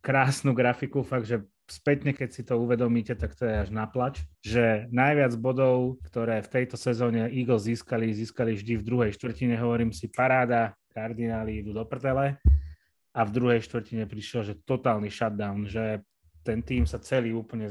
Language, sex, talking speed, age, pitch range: Slovak, male, 165 wpm, 30-49, 110-125 Hz